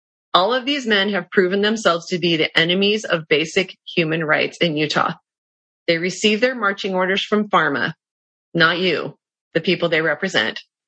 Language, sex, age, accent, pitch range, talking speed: English, female, 30-49, American, 165-205 Hz, 165 wpm